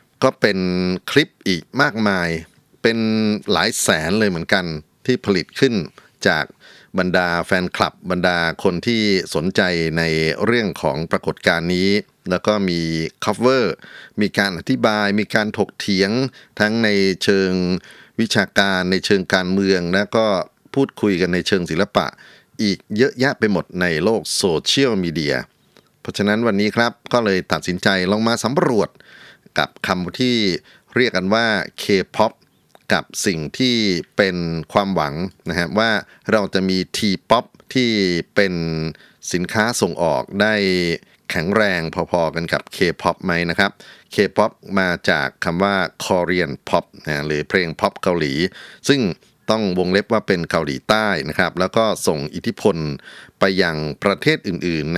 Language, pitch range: Thai, 85-105 Hz